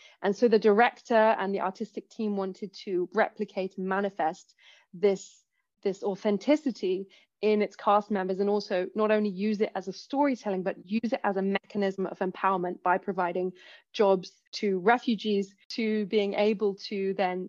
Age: 20-39